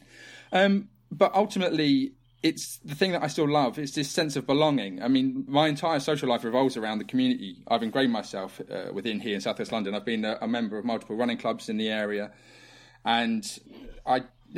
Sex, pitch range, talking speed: male, 115-155 Hz, 200 wpm